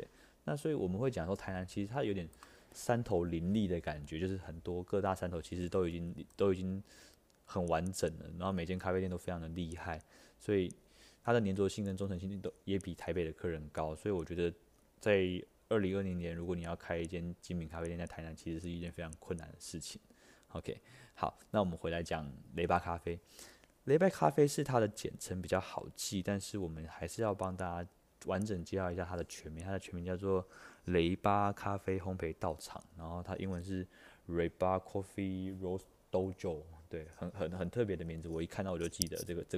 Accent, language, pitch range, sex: native, Chinese, 85-95 Hz, male